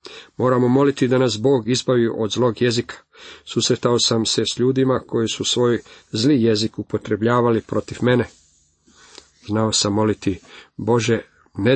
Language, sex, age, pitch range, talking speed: Croatian, male, 50-69, 105-125 Hz, 140 wpm